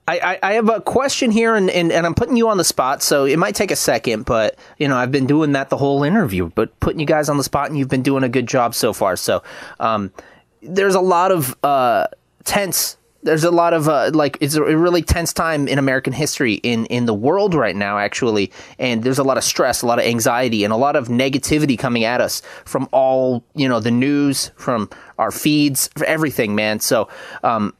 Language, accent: English, American